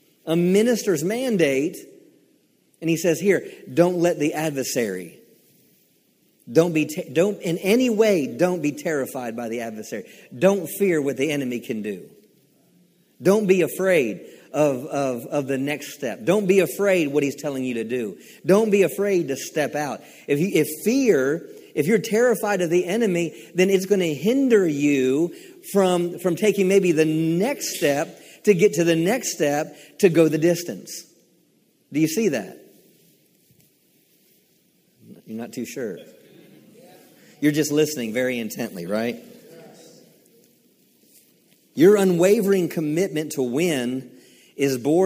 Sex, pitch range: male, 135-190 Hz